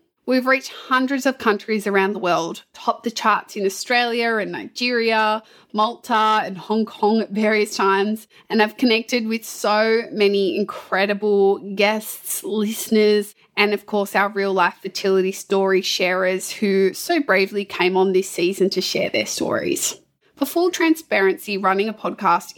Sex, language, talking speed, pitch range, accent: female, English, 150 wpm, 195-220 Hz, Australian